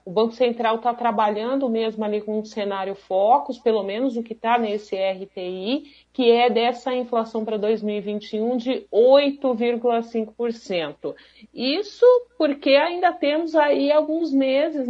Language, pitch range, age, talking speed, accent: Portuguese, 200-250 Hz, 40-59, 135 wpm, Brazilian